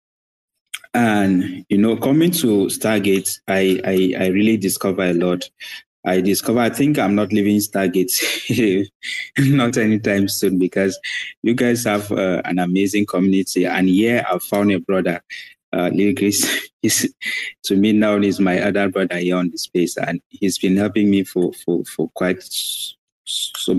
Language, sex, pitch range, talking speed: English, male, 90-110 Hz, 160 wpm